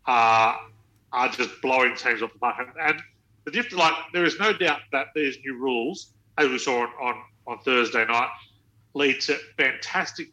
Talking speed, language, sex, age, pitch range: 180 wpm, English, male, 40-59, 110-150 Hz